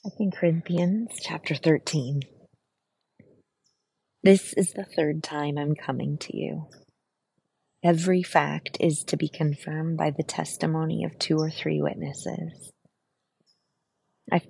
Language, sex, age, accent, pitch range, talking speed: English, female, 30-49, American, 140-165 Hz, 115 wpm